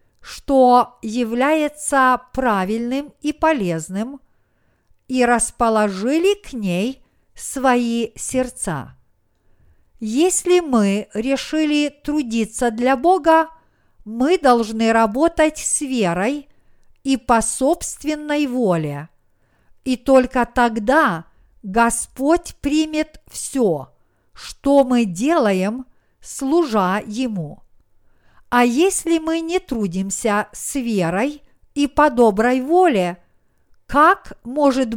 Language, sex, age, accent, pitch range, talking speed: Russian, female, 50-69, native, 205-285 Hz, 85 wpm